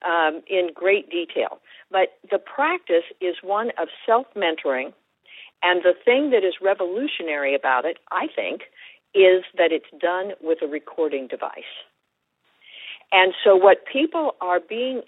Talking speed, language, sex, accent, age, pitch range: 140 wpm, English, female, American, 50-69, 155-230 Hz